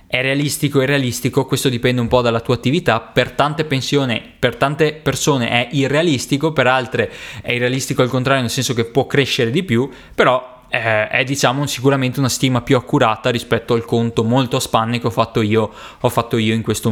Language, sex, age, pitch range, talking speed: Italian, male, 20-39, 120-150 Hz, 200 wpm